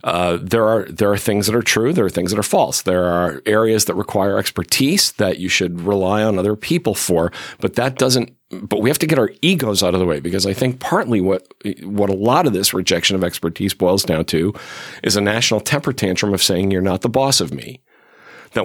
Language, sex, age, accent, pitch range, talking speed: English, male, 40-59, American, 90-110 Hz, 235 wpm